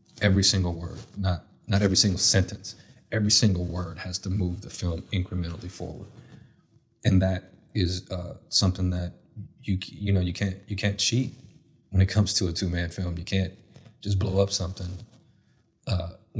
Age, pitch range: 30-49, 90-105 Hz